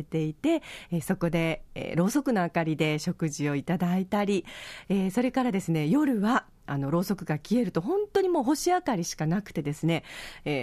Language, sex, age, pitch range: Japanese, female, 40-59, 160-235 Hz